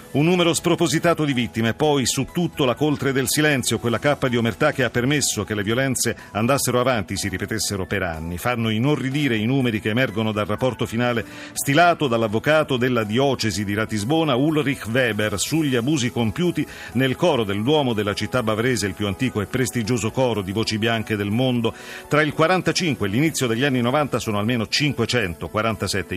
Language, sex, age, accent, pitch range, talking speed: Italian, male, 40-59, native, 110-145 Hz, 175 wpm